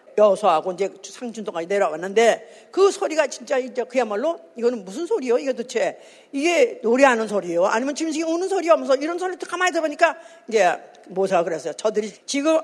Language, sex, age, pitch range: Korean, female, 50-69, 215-330 Hz